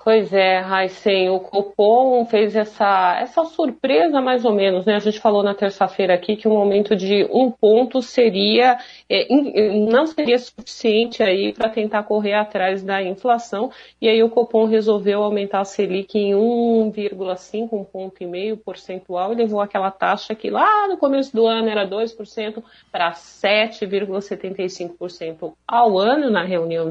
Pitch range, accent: 195-240 Hz, Brazilian